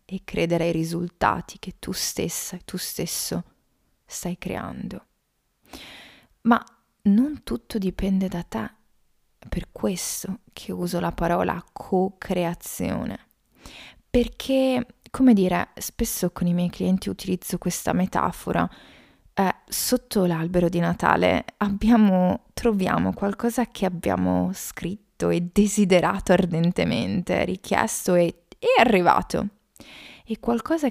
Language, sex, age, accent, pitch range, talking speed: Italian, female, 20-39, native, 180-230 Hz, 105 wpm